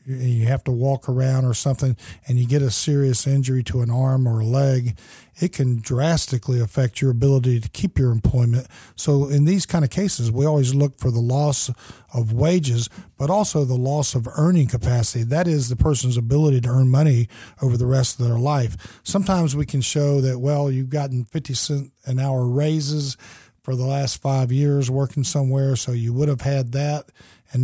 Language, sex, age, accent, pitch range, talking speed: English, male, 50-69, American, 120-145 Hz, 200 wpm